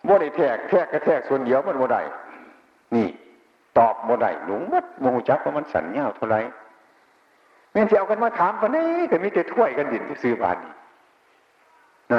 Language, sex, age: Chinese, male, 60-79